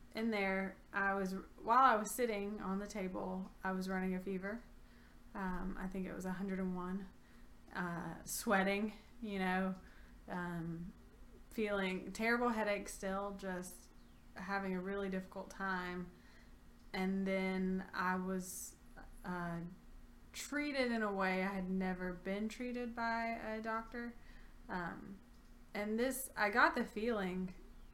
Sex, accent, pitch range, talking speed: female, American, 185-225 Hz, 130 wpm